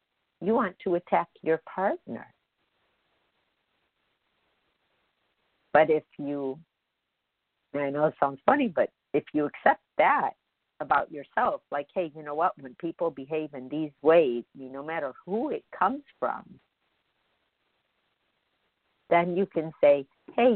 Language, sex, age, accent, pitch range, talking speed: English, female, 50-69, American, 150-195 Hz, 130 wpm